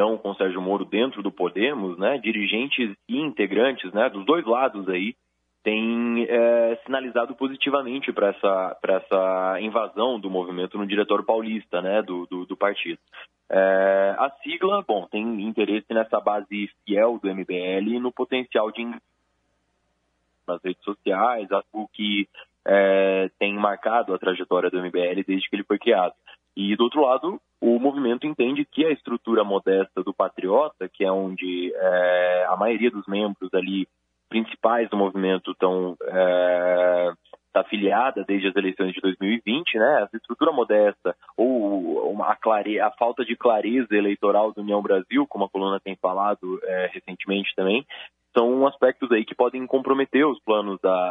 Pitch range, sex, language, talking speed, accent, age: 95-120 Hz, male, Portuguese, 155 wpm, Brazilian, 20-39